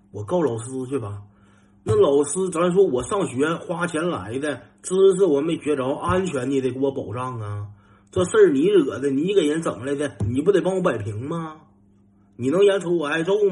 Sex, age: male, 30-49